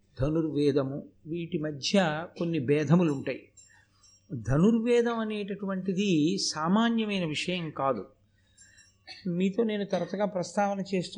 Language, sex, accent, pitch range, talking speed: Telugu, male, native, 150-205 Hz, 85 wpm